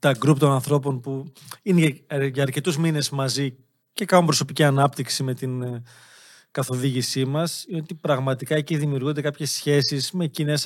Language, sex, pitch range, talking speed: Greek, male, 135-160 Hz, 145 wpm